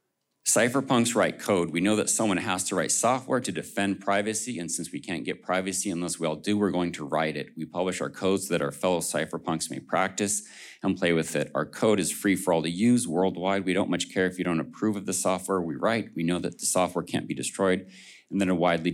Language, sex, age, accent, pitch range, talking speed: English, male, 40-59, American, 85-100 Hz, 245 wpm